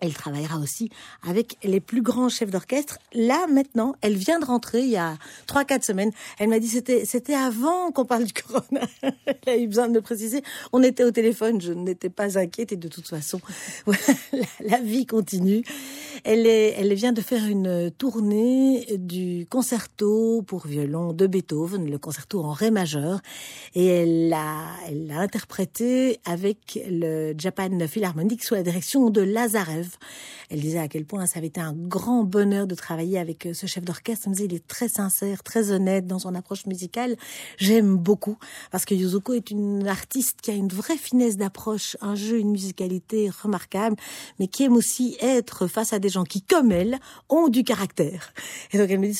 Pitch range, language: 185-240 Hz, French